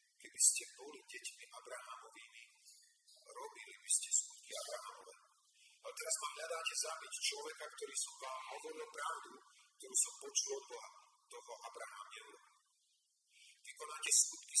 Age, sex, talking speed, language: 40-59, male, 120 wpm, Slovak